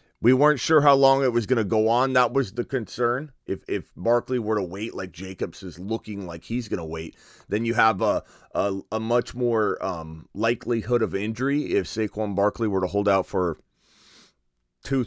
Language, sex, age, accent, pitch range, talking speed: English, male, 30-49, American, 85-120 Hz, 195 wpm